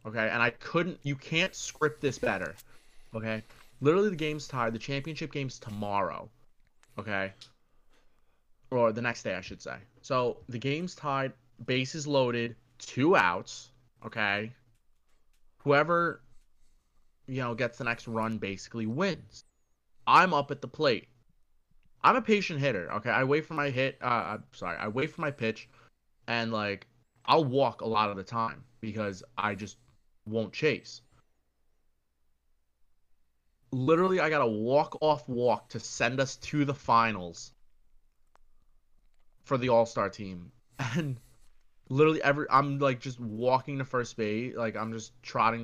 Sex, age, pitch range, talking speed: male, 20-39, 110-145 Hz, 145 wpm